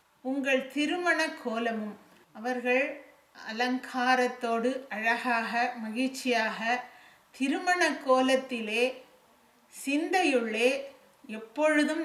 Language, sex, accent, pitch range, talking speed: English, female, Indian, 235-275 Hz, 65 wpm